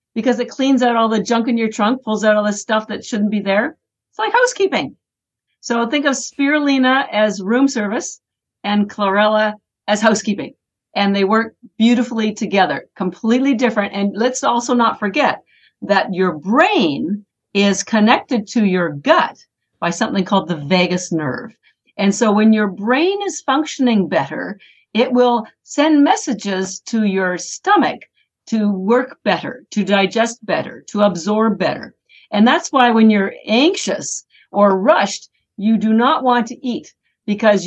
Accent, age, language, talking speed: American, 50-69, English, 155 wpm